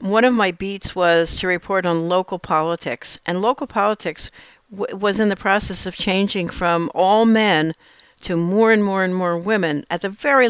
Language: English